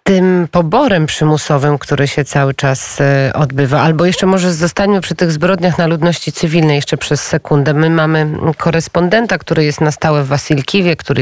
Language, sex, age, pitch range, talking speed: Polish, female, 30-49, 135-160 Hz, 165 wpm